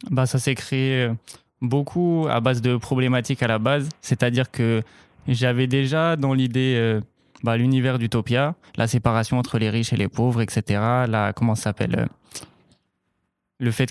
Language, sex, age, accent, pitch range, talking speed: French, male, 20-39, French, 115-130 Hz, 160 wpm